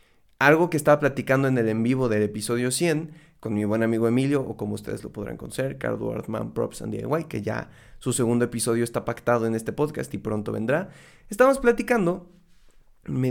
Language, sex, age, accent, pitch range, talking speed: Spanish, male, 30-49, Mexican, 125-195 Hz, 195 wpm